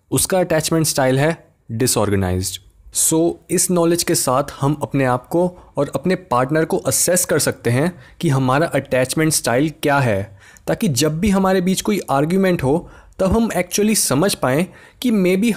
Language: Hindi